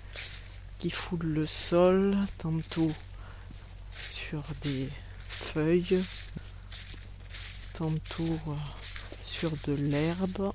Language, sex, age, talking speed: French, female, 50-69, 65 wpm